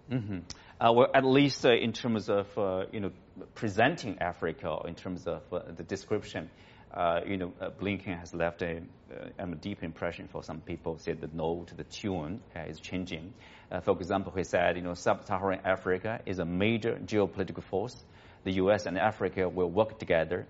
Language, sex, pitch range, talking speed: English, male, 85-110 Hz, 195 wpm